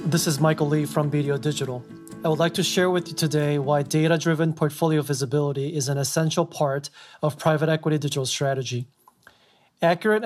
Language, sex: English, male